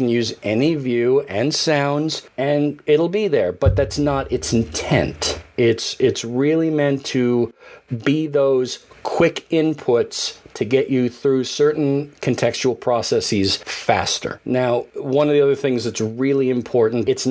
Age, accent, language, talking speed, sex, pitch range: 40-59, American, English, 140 wpm, male, 120-160 Hz